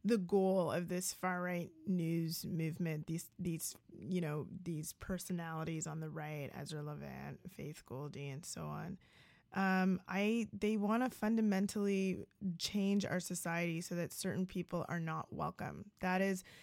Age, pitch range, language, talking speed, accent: 20-39, 175-205 Hz, English, 150 wpm, American